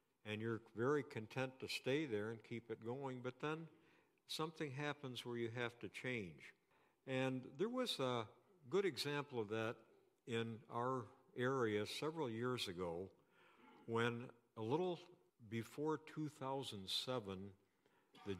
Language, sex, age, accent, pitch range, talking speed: English, male, 60-79, American, 105-135 Hz, 130 wpm